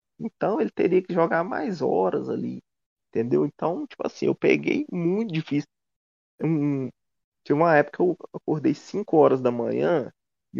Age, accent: 20-39, Brazilian